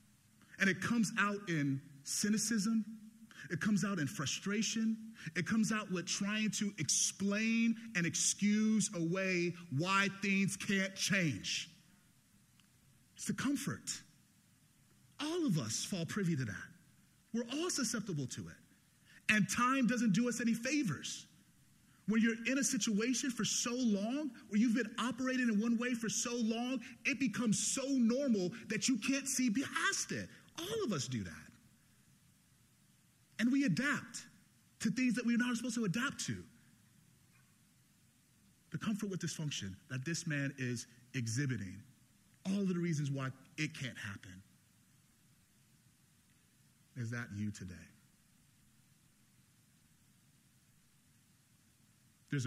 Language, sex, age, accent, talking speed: English, male, 30-49, American, 130 wpm